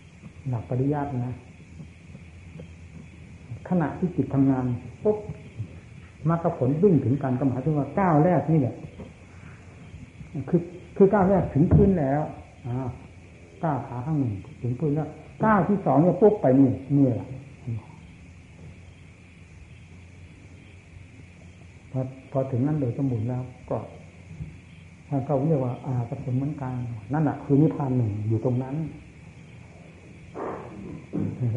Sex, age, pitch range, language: male, 60-79, 115-160 Hz, Thai